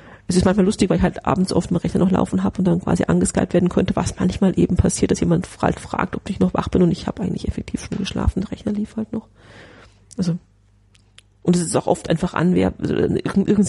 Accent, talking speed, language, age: German, 235 wpm, German, 30-49